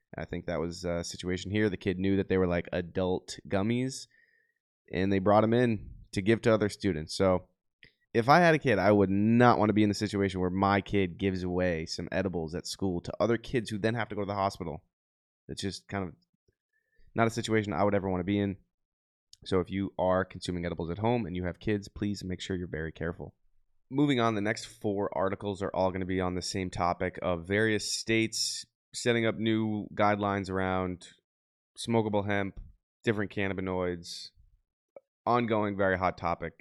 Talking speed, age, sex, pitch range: 205 wpm, 20-39, male, 90-105 Hz